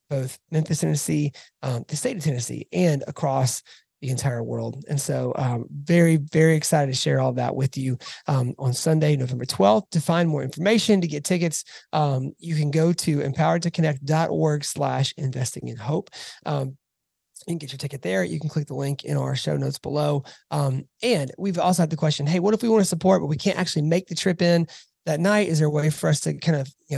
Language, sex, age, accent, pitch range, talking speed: English, male, 30-49, American, 135-165 Hz, 220 wpm